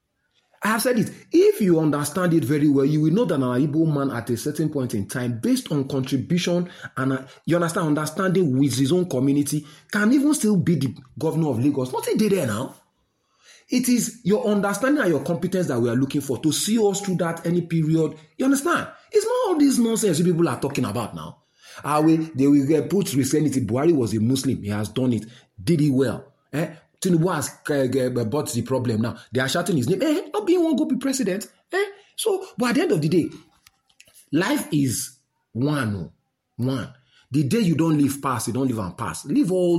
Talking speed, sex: 215 wpm, male